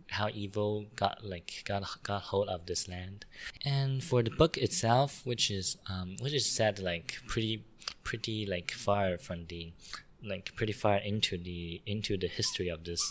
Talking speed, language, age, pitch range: 175 wpm, English, 20-39, 90-110 Hz